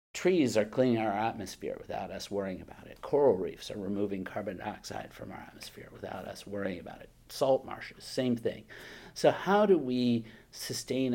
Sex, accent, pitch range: male, American, 100-135 Hz